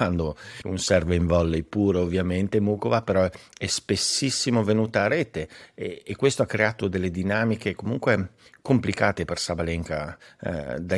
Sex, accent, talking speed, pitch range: male, native, 150 wpm, 85-105 Hz